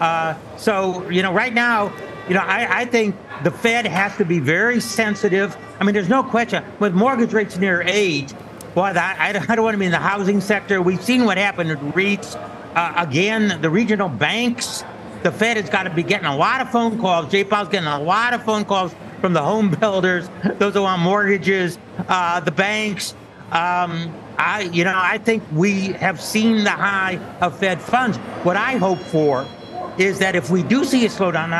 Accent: American